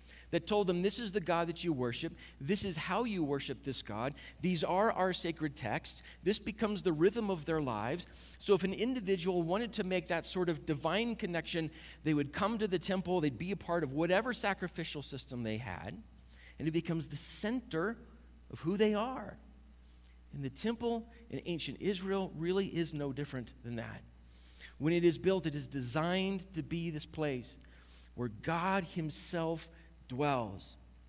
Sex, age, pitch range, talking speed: male, 40-59, 135-190 Hz, 180 wpm